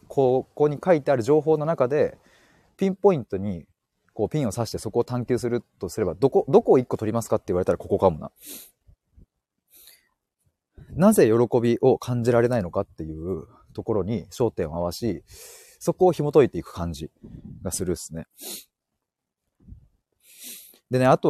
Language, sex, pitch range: Japanese, male, 100-160 Hz